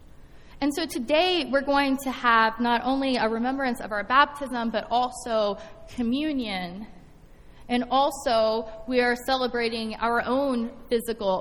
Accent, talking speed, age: American, 130 wpm, 20-39